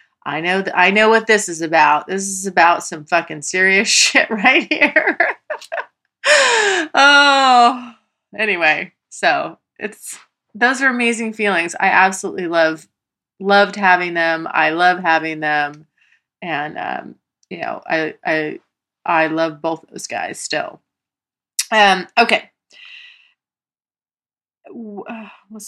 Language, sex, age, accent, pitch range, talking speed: English, female, 30-49, American, 180-255 Hz, 115 wpm